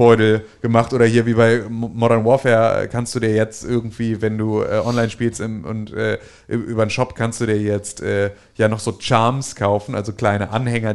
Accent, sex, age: German, male, 30-49